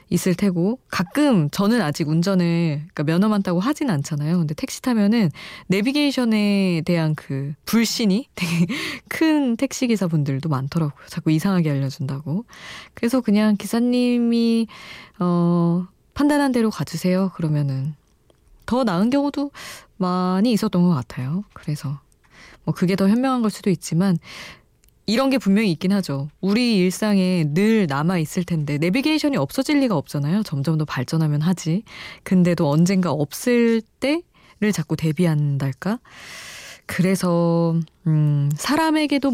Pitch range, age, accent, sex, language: 160-220 Hz, 20-39, native, female, Korean